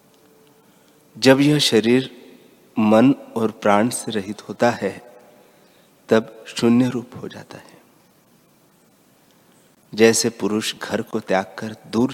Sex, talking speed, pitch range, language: male, 115 wpm, 100-125 Hz, Hindi